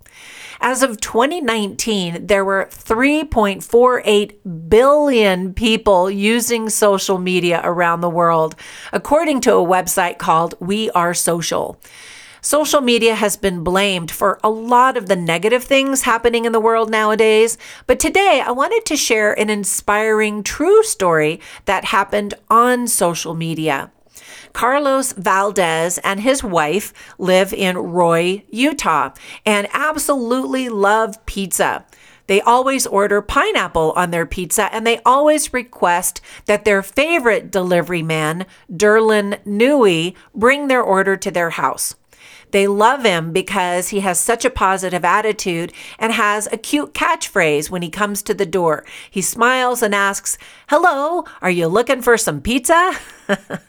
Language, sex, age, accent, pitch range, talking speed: English, female, 40-59, American, 185-245 Hz, 135 wpm